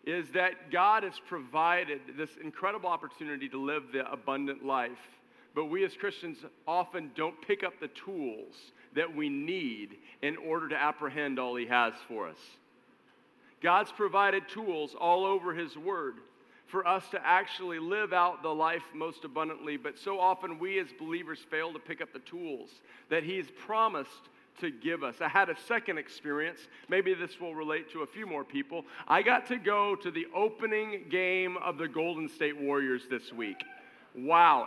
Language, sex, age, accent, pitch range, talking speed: English, male, 50-69, American, 160-210 Hz, 175 wpm